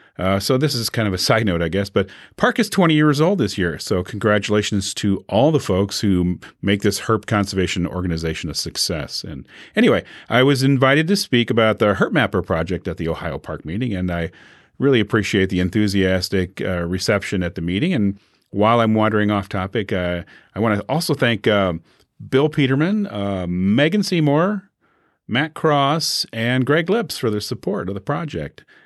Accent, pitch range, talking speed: American, 95-130 Hz, 190 wpm